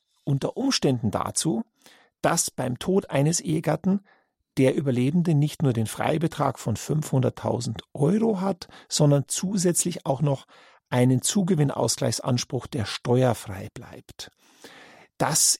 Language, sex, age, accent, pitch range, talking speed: German, male, 50-69, German, 120-170 Hz, 110 wpm